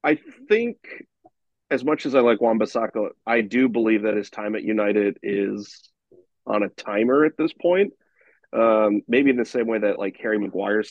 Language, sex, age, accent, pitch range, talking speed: English, male, 30-49, American, 105-115 Hz, 185 wpm